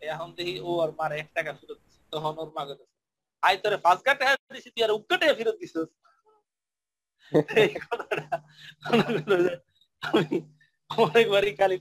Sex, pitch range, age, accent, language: male, 160-215 Hz, 40-59, native, Bengali